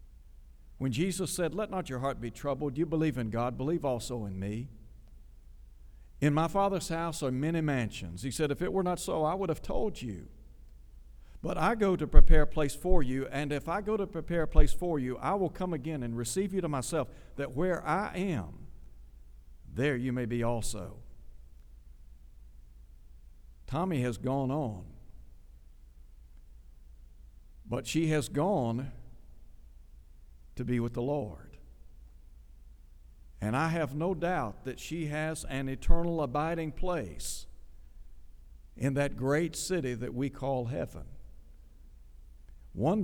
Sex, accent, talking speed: male, American, 150 wpm